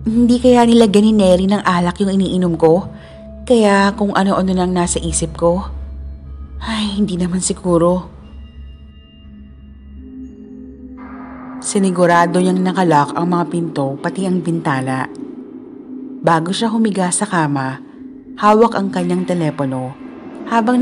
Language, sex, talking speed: Filipino, female, 110 wpm